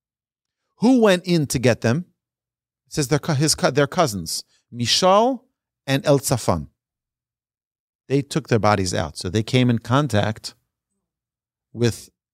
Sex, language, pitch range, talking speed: male, English, 115-170 Hz, 125 wpm